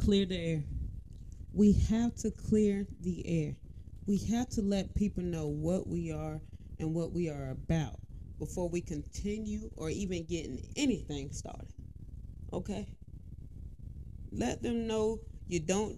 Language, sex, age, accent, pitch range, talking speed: English, female, 30-49, American, 125-200 Hz, 140 wpm